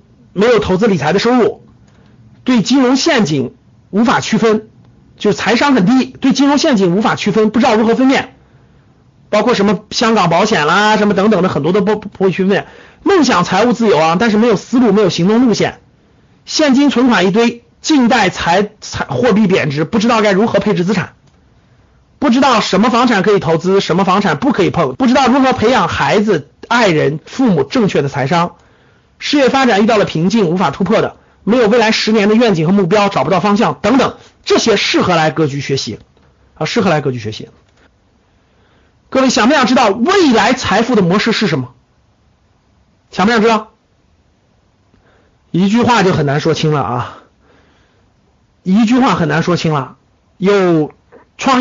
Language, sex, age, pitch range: Chinese, male, 50-69, 155-230 Hz